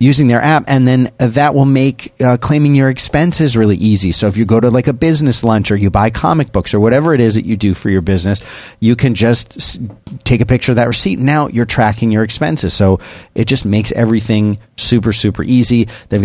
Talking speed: 225 wpm